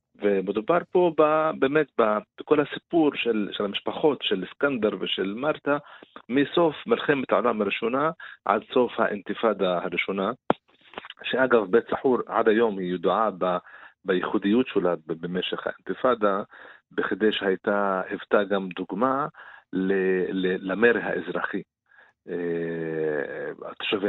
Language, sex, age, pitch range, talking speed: Hebrew, male, 40-59, 95-115 Hz, 100 wpm